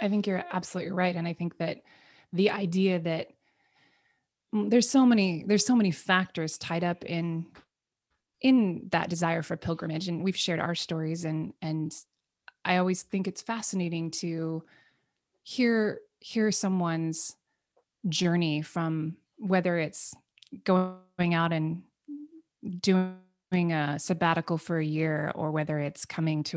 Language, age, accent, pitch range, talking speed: English, 20-39, American, 160-195 Hz, 140 wpm